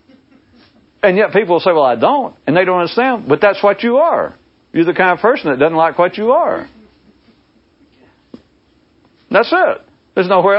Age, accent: 60-79, American